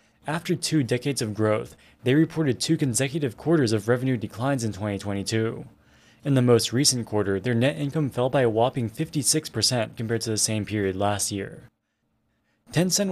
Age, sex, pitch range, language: 20-39, male, 110-140 Hz, English